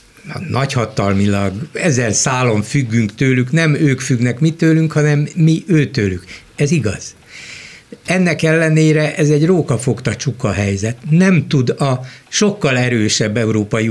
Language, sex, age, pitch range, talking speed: Hungarian, male, 60-79, 110-155 Hz, 120 wpm